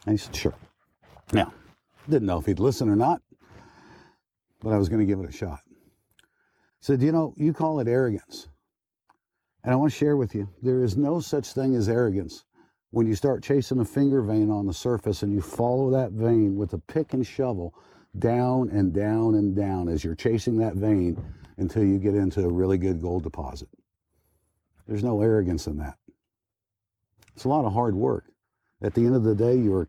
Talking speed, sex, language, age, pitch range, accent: 205 wpm, male, English, 60-79, 95-115 Hz, American